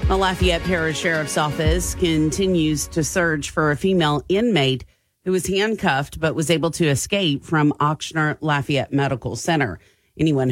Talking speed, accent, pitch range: 150 wpm, American, 135-170 Hz